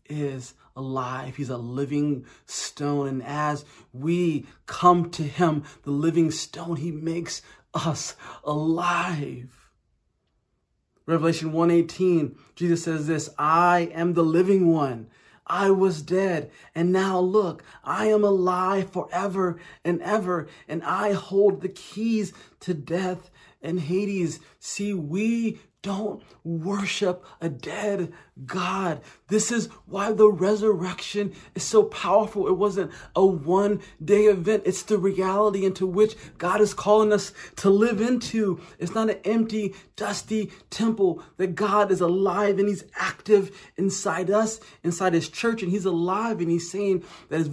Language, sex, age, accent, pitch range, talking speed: English, male, 30-49, American, 160-200 Hz, 135 wpm